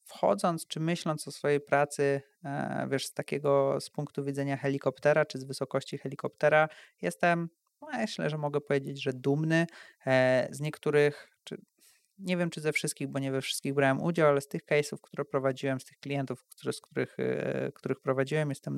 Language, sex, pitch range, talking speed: Polish, male, 140-170 Hz, 170 wpm